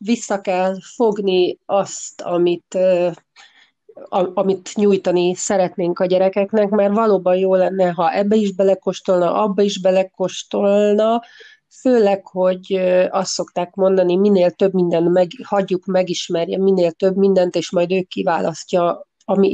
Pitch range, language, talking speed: 175-200 Hz, Hungarian, 125 wpm